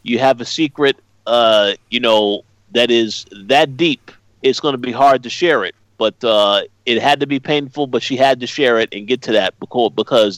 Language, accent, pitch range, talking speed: English, American, 110-140 Hz, 215 wpm